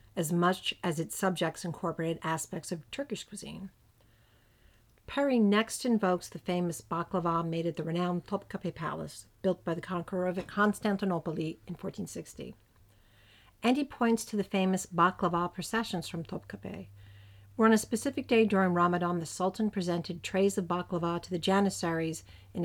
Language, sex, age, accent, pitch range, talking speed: English, female, 50-69, American, 165-200 Hz, 150 wpm